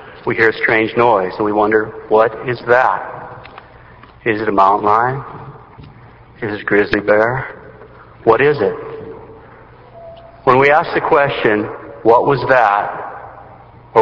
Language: English